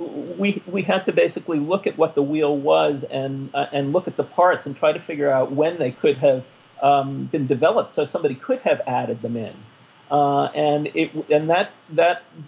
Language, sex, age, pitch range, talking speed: English, male, 40-59, 125-150 Hz, 205 wpm